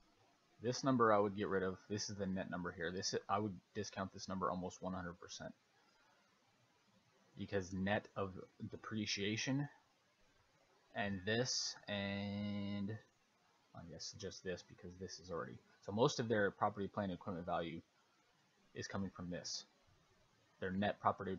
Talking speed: 145 wpm